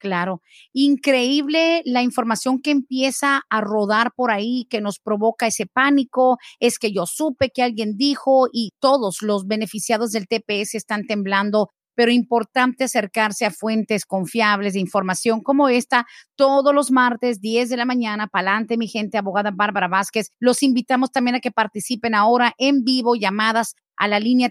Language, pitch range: Spanish, 215-250 Hz